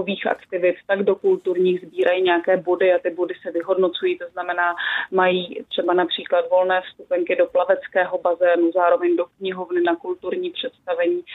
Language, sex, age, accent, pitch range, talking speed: Czech, female, 30-49, native, 180-195 Hz, 150 wpm